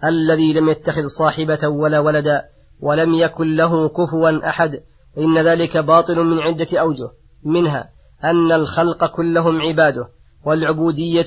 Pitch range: 150-165 Hz